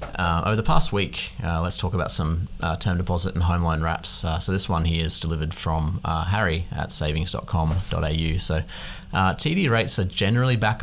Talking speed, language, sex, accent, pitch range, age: 205 wpm, English, male, Australian, 80-95 Hz, 30-49